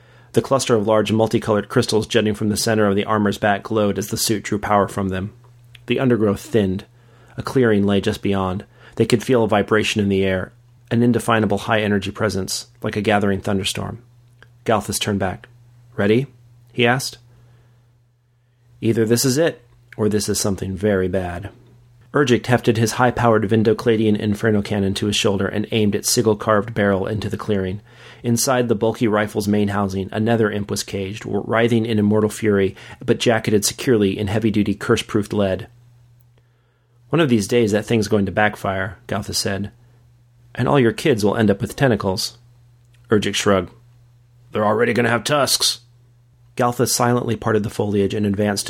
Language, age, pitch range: English, 30-49, 105-120 Hz